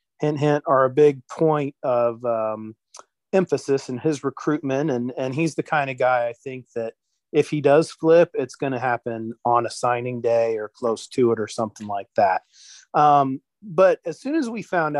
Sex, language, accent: male, English, American